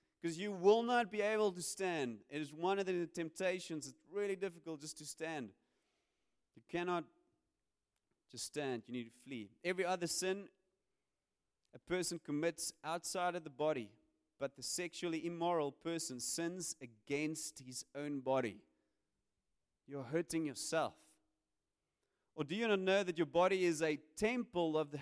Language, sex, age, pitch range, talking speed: English, male, 30-49, 155-195 Hz, 150 wpm